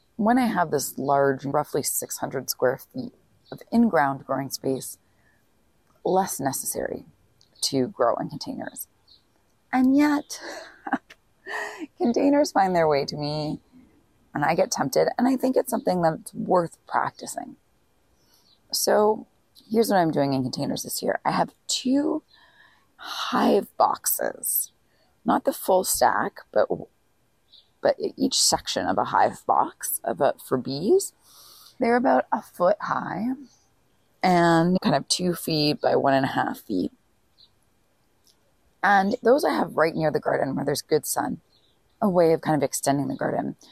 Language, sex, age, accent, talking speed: English, female, 30-49, American, 145 wpm